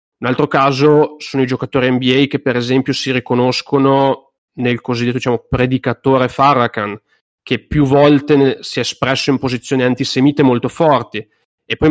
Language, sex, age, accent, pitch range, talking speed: Italian, male, 40-59, native, 130-155 Hz, 145 wpm